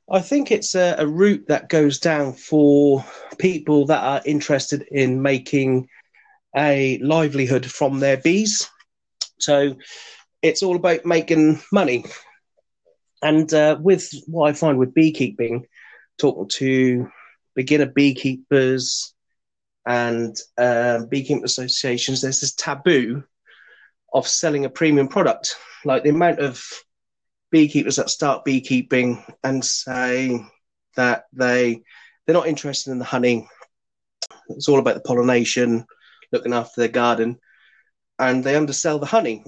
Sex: male